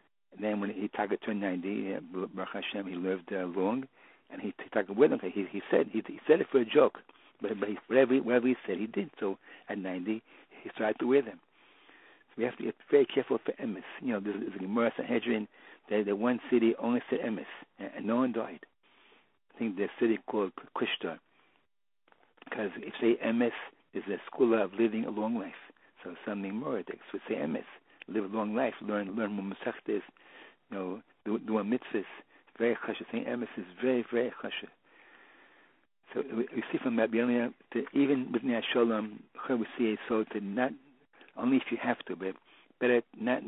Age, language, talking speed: 60-79, English, 190 wpm